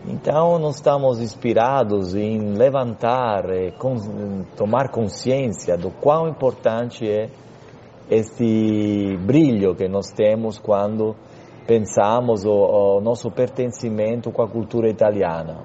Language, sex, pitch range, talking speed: Portuguese, male, 105-130 Hz, 105 wpm